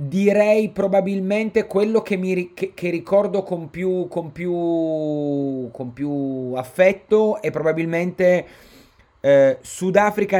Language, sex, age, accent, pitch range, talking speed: Italian, male, 30-49, native, 135-175 Hz, 110 wpm